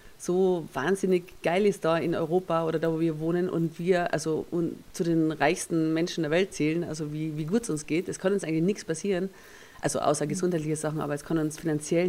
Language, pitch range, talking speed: German, 160-185 Hz, 225 wpm